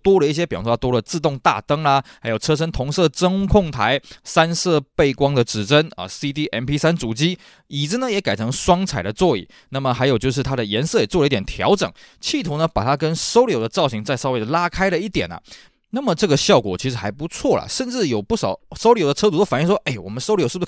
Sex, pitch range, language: male, 130-190 Hz, Chinese